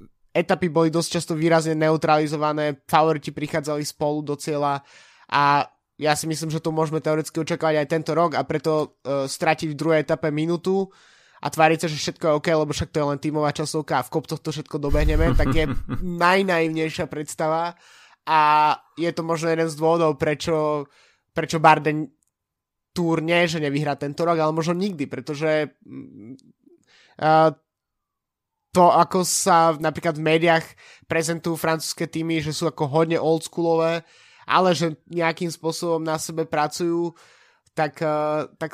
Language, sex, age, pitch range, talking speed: Slovak, male, 20-39, 150-165 Hz, 155 wpm